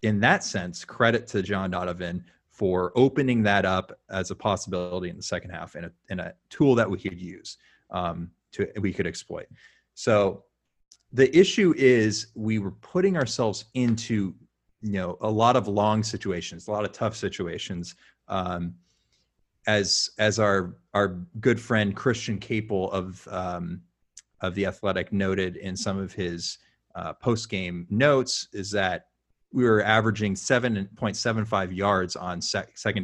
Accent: American